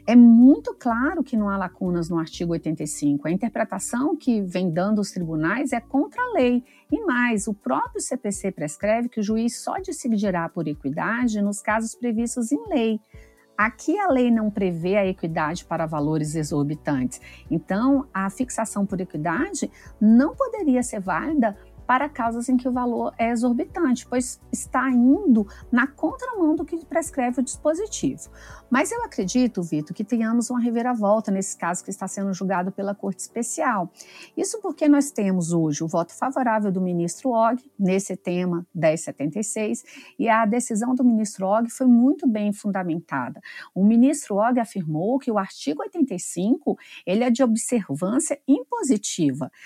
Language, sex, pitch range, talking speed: Portuguese, female, 190-270 Hz, 160 wpm